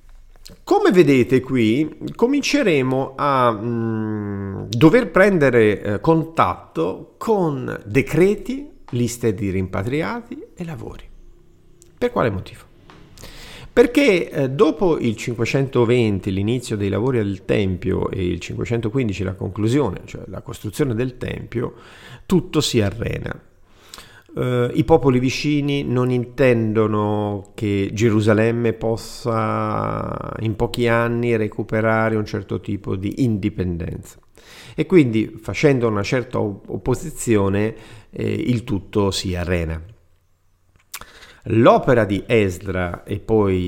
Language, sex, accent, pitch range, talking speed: Italian, male, native, 100-135 Hz, 105 wpm